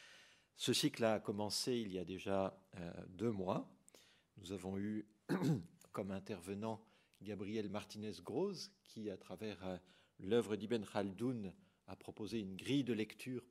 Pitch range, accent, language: 95-115 Hz, French, French